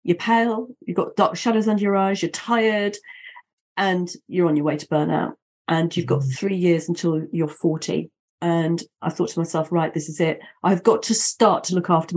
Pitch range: 175-220 Hz